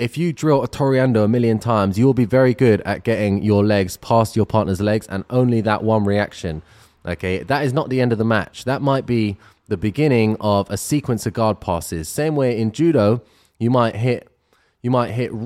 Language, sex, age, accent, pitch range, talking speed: English, male, 20-39, British, 95-120 Hz, 215 wpm